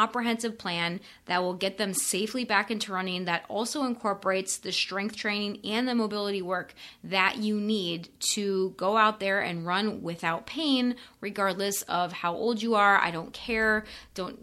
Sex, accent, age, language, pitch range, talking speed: female, American, 20-39, English, 180-215 Hz, 170 wpm